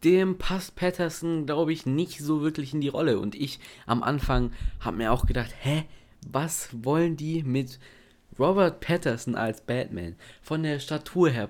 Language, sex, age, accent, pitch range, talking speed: German, male, 20-39, German, 120-150 Hz, 165 wpm